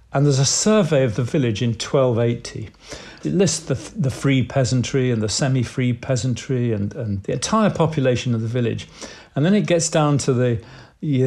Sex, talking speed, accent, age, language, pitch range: male, 185 wpm, British, 50-69, English, 115-140 Hz